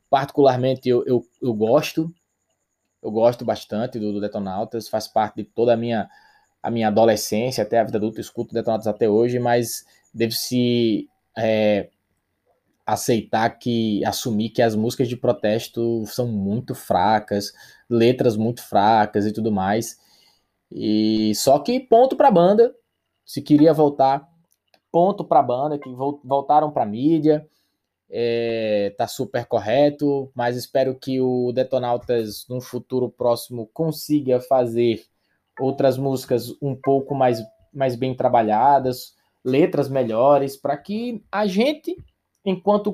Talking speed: 135 wpm